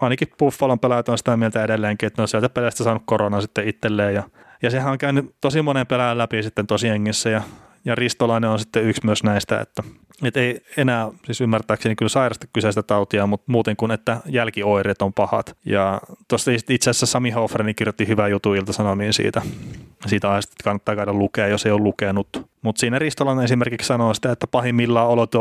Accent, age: native, 30-49